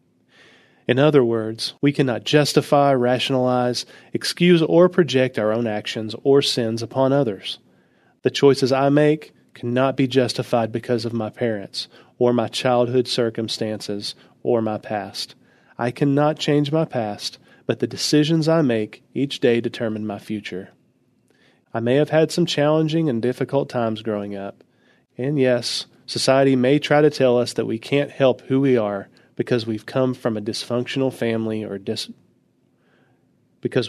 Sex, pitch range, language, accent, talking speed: male, 115-140 Hz, English, American, 150 wpm